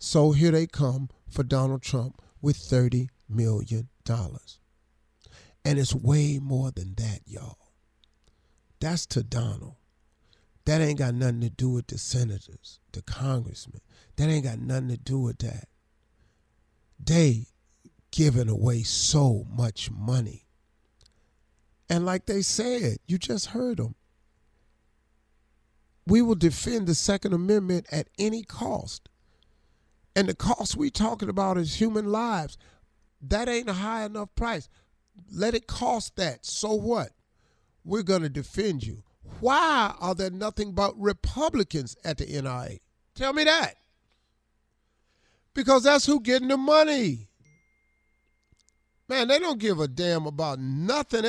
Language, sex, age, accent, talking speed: English, male, 50-69, American, 130 wpm